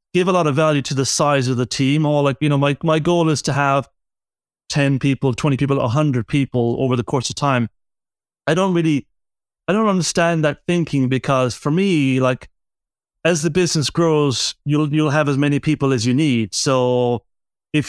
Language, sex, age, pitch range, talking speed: English, male, 30-49, 130-150 Hz, 200 wpm